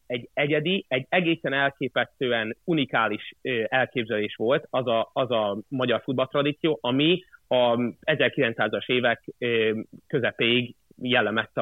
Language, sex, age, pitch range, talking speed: Hungarian, male, 30-49, 110-135 Hz, 105 wpm